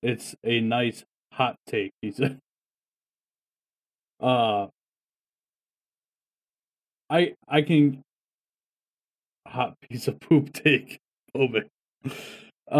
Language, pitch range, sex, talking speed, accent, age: English, 130-160 Hz, male, 70 wpm, American, 20-39